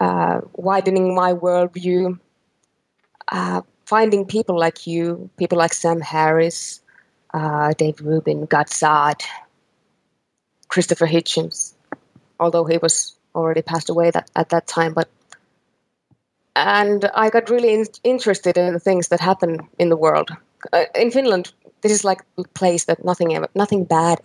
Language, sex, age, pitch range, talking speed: English, female, 20-39, 165-205 Hz, 140 wpm